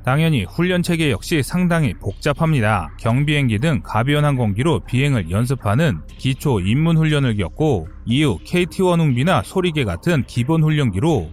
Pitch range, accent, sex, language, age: 115-170 Hz, native, male, Korean, 30-49